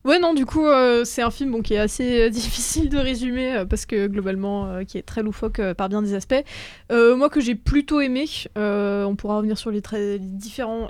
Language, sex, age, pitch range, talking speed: French, female, 20-39, 205-240 Hz, 250 wpm